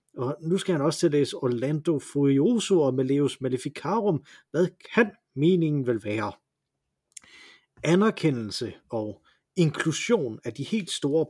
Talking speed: 120 wpm